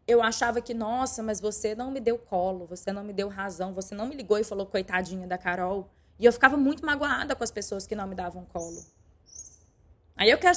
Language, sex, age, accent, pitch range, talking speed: Portuguese, female, 20-39, Brazilian, 190-265 Hz, 225 wpm